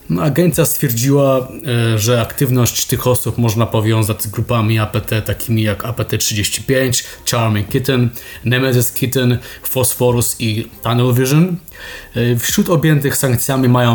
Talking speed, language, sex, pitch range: 110 wpm, Polish, male, 115-130 Hz